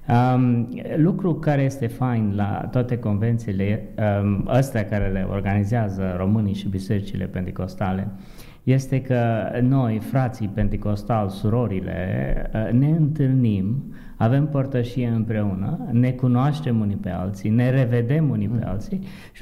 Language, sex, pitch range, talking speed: Romanian, male, 100-125 Hz, 120 wpm